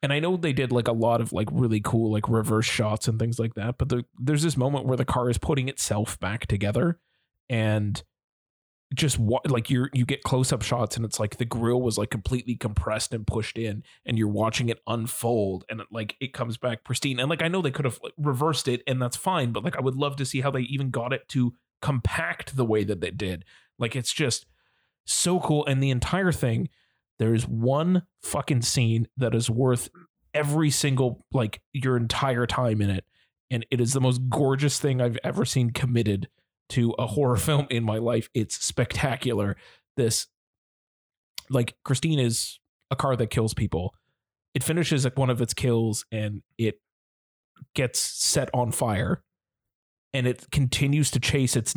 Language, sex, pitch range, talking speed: English, male, 115-135 Hz, 195 wpm